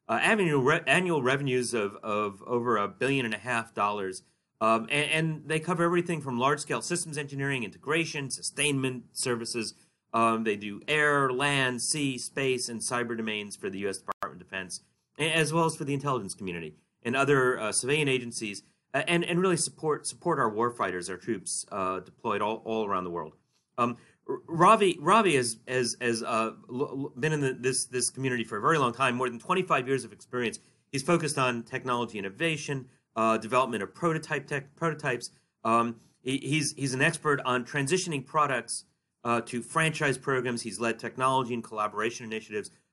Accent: American